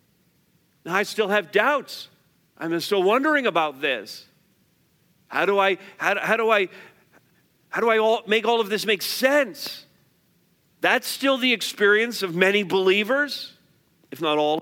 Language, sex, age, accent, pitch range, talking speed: English, male, 50-69, American, 165-230 Hz, 150 wpm